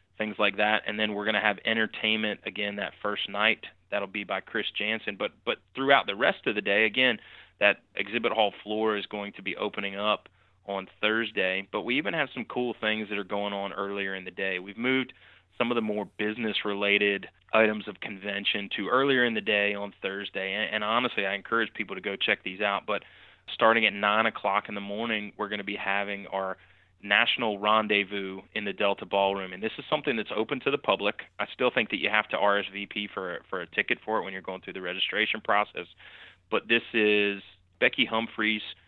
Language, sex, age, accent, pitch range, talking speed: English, male, 20-39, American, 100-110 Hz, 215 wpm